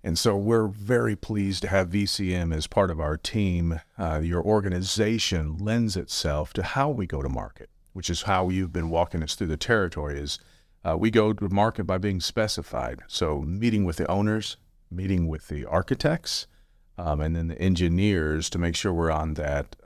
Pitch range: 80-100 Hz